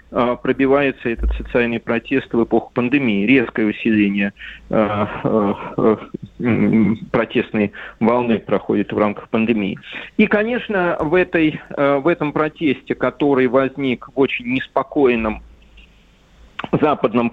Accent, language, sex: native, Russian, male